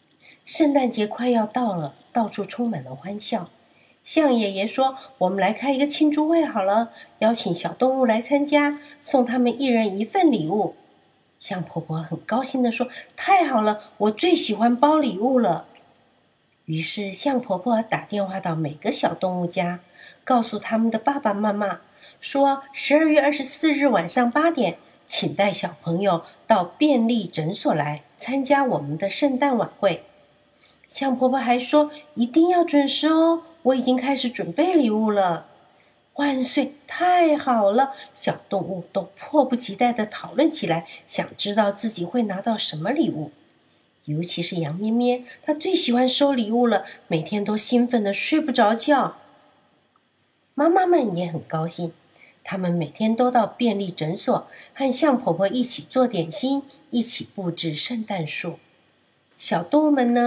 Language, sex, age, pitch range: Chinese, female, 50-69, 195-275 Hz